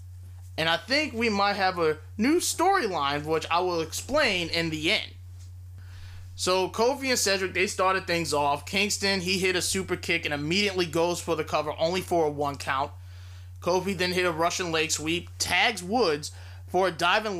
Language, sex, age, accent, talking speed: English, male, 20-39, American, 185 wpm